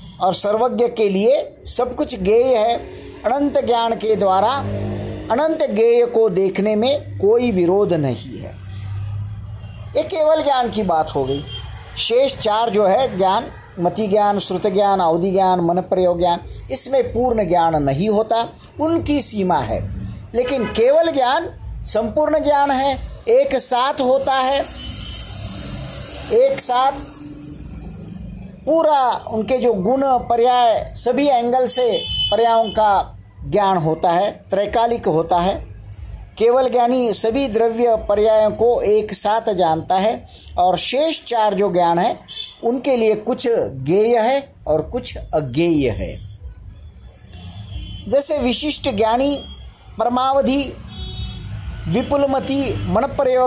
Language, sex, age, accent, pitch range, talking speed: Hindi, male, 50-69, native, 160-255 Hz, 120 wpm